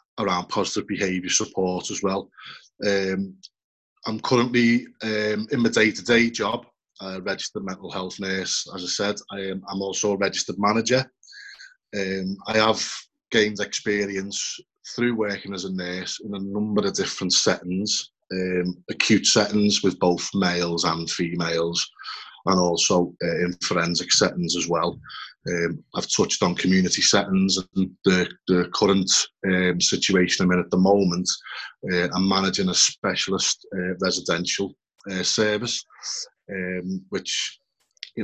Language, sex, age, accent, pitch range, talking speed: English, male, 20-39, British, 90-100 Hz, 140 wpm